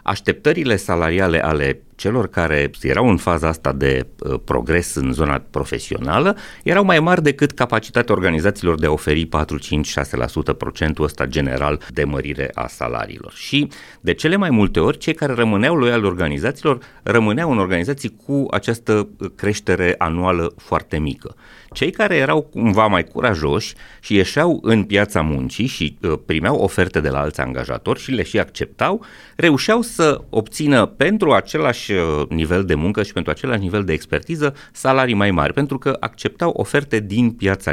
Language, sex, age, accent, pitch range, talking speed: Romanian, male, 30-49, native, 80-130 Hz, 155 wpm